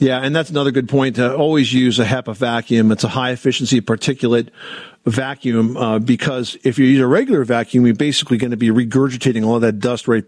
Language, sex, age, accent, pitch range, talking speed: English, male, 50-69, American, 120-145 Hz, 210 wpm